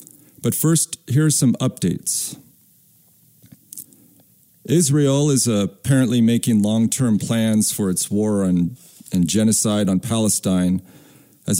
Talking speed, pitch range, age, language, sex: 110 wpm, 100-125 Hz, 40-59, English, male